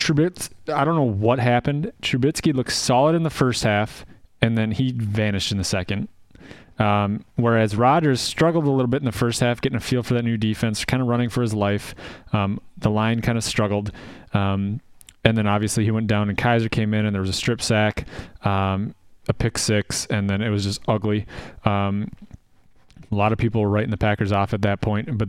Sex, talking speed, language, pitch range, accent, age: male, 215 wpm, English, 100-115 Hz, American, 30-49